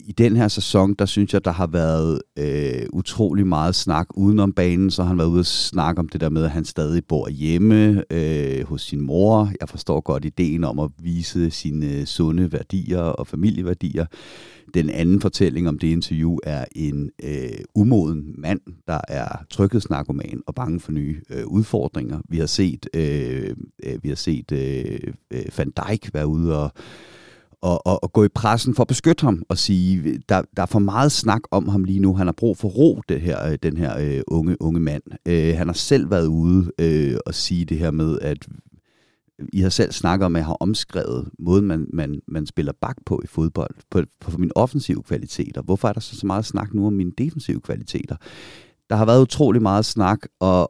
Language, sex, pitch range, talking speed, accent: Danish, male, 80-100 Hz, 210 wpm, native